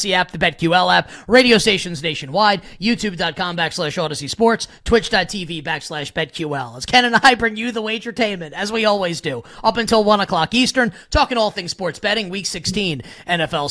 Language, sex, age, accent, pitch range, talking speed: English, male, 30-49, American, 160-220 Hz, 170 wpm